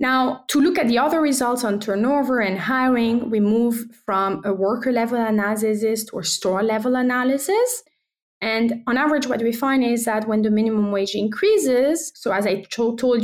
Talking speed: 170 wpm